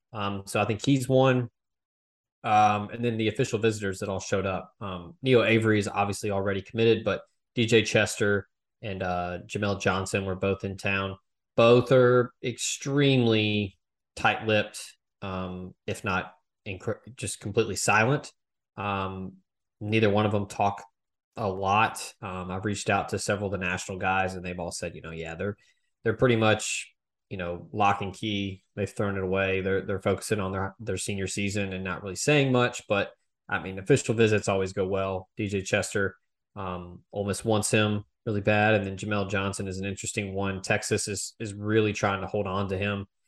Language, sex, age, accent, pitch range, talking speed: English, male, 20-39, American, 95-110 Hz, 180 wpm